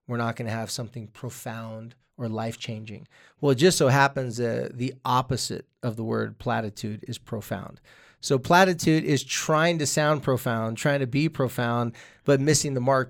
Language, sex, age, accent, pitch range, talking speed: English, male, 30-49, American, 125-165 Hz, 170 wpm